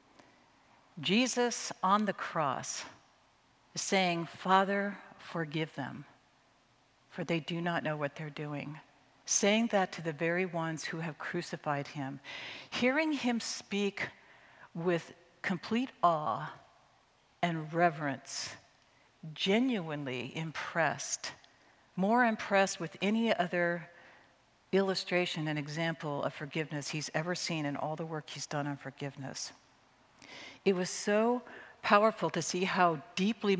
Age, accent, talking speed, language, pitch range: 60-79, American, 115 wpm, English, 155-195 Hz